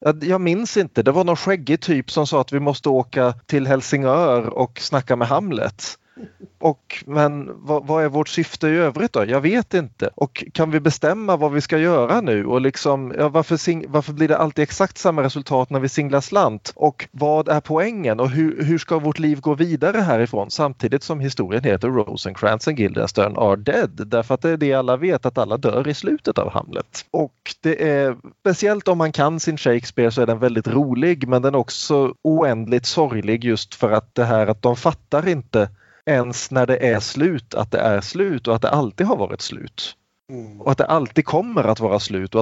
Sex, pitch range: male, 120-160 Hz